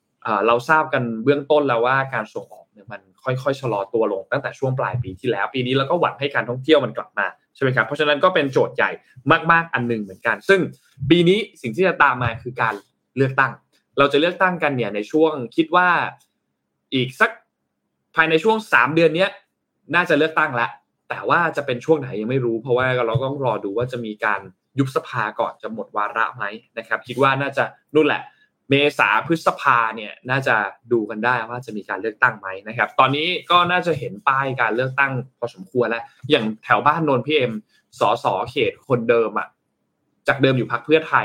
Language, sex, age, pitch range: Thai, male, 20-39, 120-155 Hz